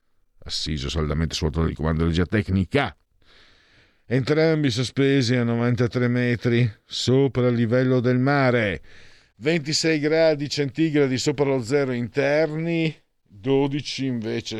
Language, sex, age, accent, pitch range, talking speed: Italian, male, 50-69, native, 85-130 Hz, 105 wpm